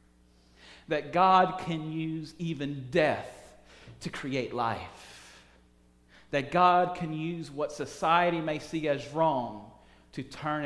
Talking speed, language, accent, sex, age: 120 wpm, English, American, male, 40-59